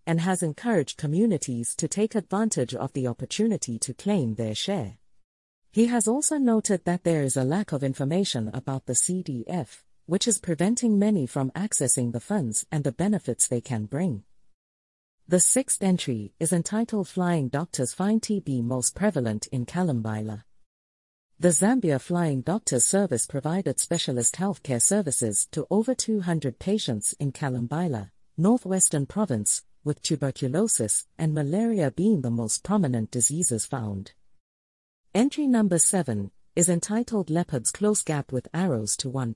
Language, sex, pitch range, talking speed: English, female, 120-195 Hz, 145 wpm